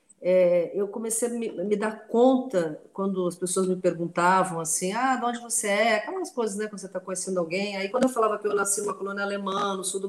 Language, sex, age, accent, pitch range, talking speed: Portuguese, female, 40-59, Brazilian, 185-245 Hz, 230 wpm